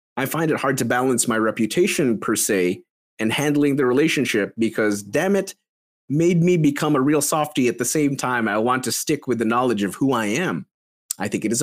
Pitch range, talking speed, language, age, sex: 110-145 Hz, 215 wpm, English, 30-49, male